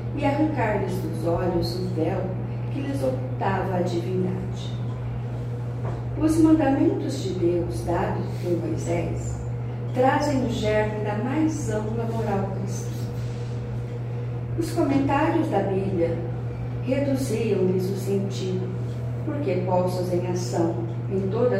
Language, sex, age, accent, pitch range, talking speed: Portuguese, female, 40-59, Brazilian, 100-120 Hz, 110 wpm